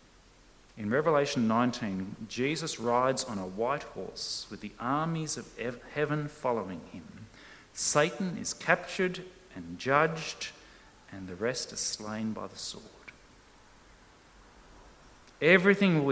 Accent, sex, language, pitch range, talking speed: Australian, male, English, 115-160 Hz, 115 wpm